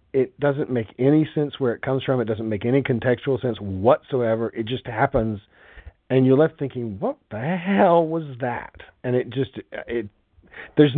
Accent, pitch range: American, 100-140 Hz